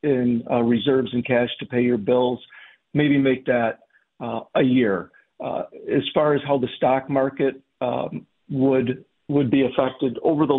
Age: 50-69